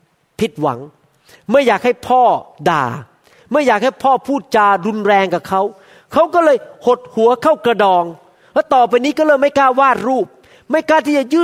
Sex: male